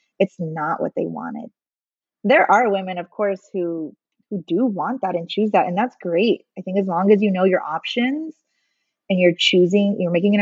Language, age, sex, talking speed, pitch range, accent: English, 20-39, female, 205 wpm, 175-210 Hz, American